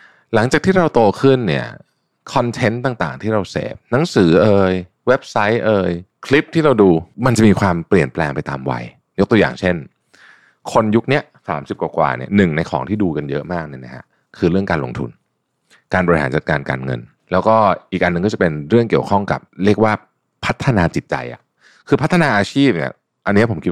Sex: male